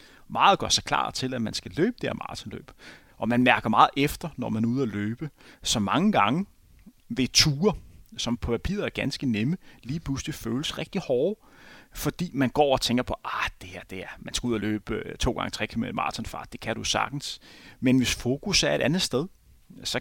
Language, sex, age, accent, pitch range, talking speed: Danish, male, 30-49, native, 120-160 Hz, 220 wpm